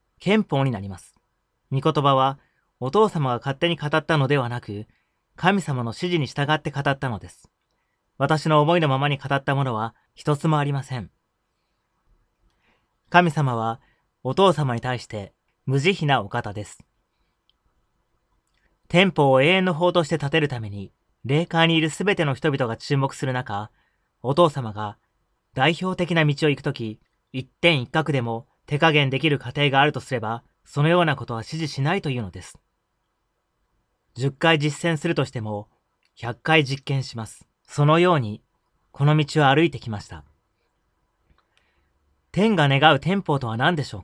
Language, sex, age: Japanese, male, 30-49